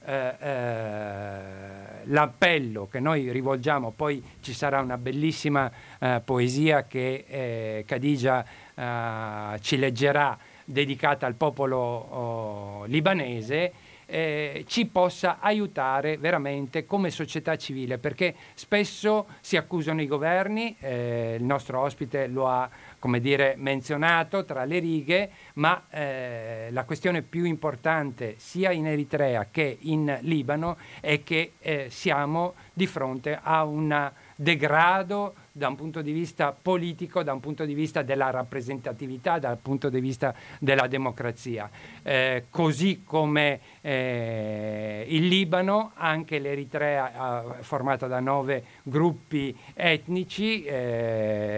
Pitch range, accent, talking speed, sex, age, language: 125-160 Hz, native, 125 wpm, male, 50-69, Italian